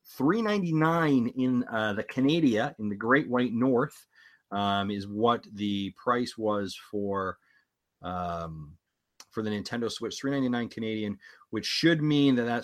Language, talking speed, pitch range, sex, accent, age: English, 140 wpm, 100-135 Hz, male, American, 30-49